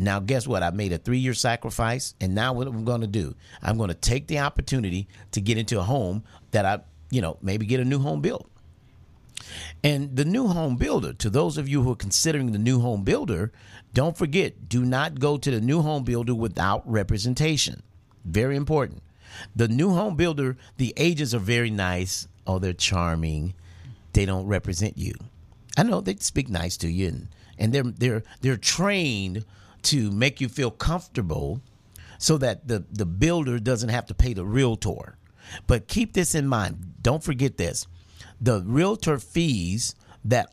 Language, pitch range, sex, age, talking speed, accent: English, 100-140 Hz, male, 50-69, 180 wpm, American